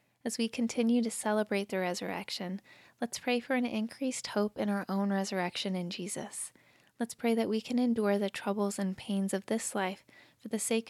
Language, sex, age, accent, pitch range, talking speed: English, female, 10-29, American, 190-225 Hz, 195 wpm